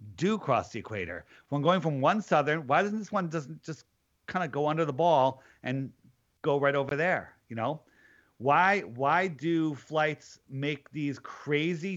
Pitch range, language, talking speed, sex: 135-175 Hz, English, 175 wpm, male